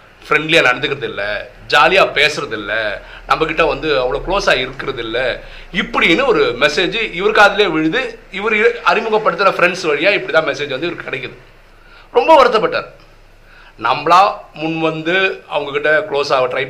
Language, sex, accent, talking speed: Tamil, male, native, 120 wpm